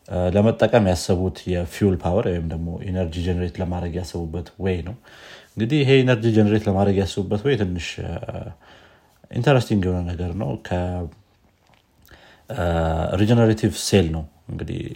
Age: 30-49